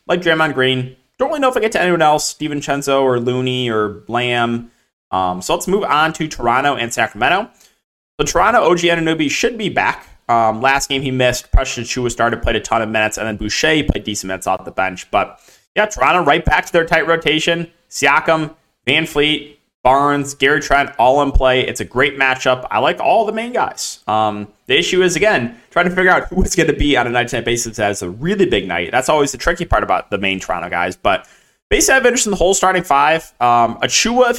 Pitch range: 115-160 Hz